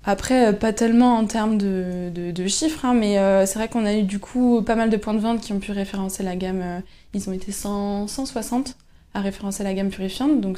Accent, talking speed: French, 245 wpm